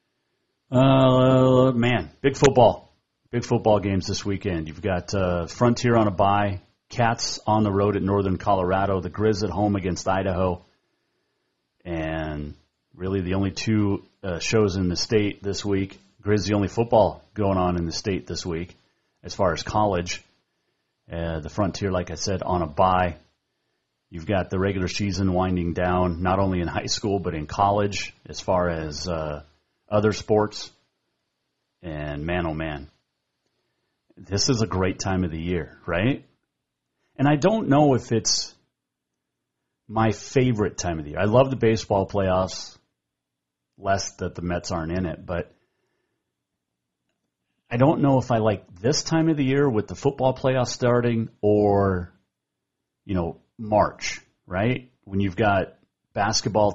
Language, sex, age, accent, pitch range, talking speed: English, male, 30-49, American, 90-110 Hz, 155 wpm